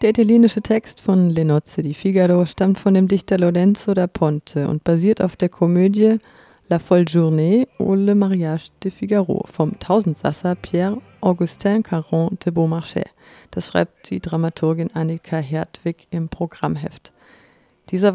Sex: female